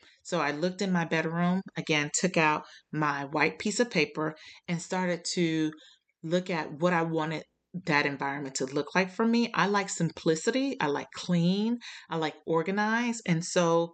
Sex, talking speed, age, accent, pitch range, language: female, 170 wpm, 30-49, American, 155-185 Hz, English